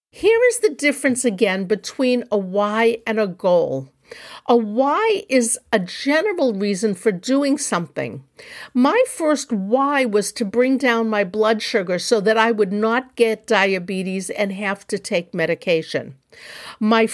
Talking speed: 150 wpm